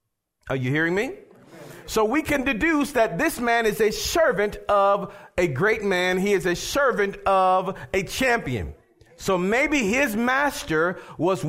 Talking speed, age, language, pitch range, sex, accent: 155 wpm, 40-59, English, 180-255 Hz, male, American